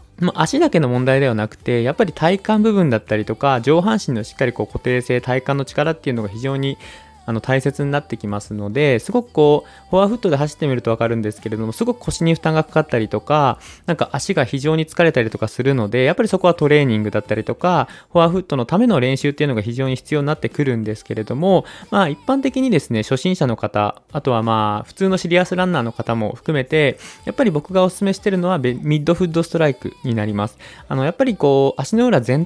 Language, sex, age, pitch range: Japanese, male, 20-39, 115-175 Hz